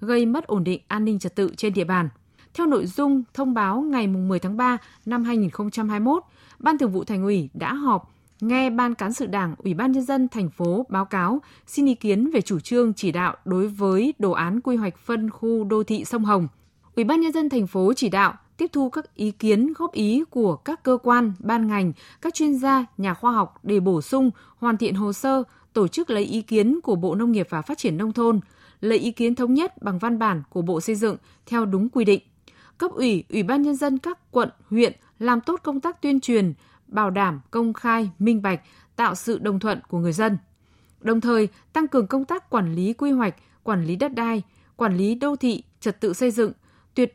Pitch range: 195-250 Hz